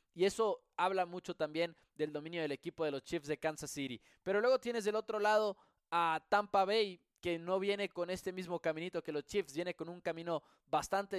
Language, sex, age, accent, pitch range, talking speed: English, male, 20-39, Mexican, 160-195 Hz, 210 wpm